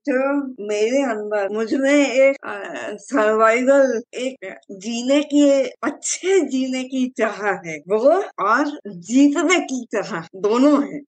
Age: 20-39